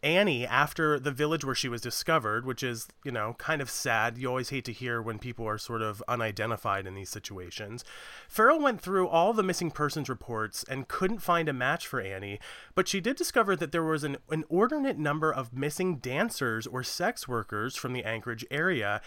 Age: 30-49